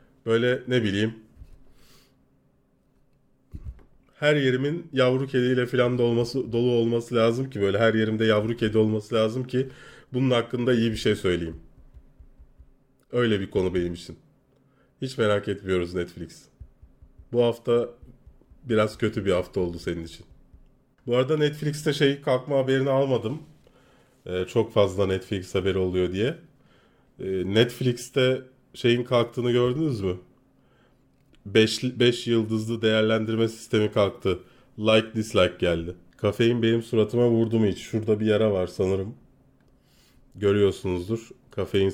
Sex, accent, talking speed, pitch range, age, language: male, native, 120 wpm, 95-130 Hz, 30-49, Turkish